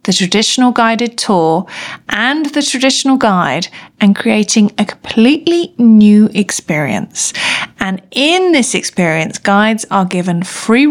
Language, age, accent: English, 40-59, British